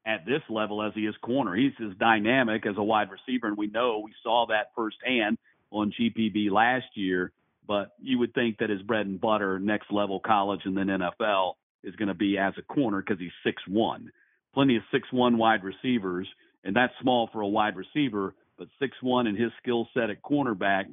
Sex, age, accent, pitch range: male, 50-69, American, 105-125 Hz